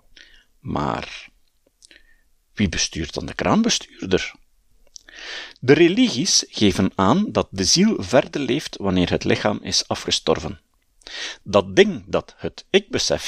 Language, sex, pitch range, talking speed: Dutch, male, 85-135 Hz, 115 wpm